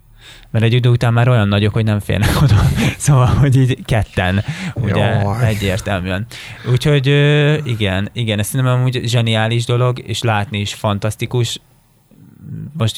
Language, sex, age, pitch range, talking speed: Hungarian, male, 20-39, 100-120 Hz, 140 wpm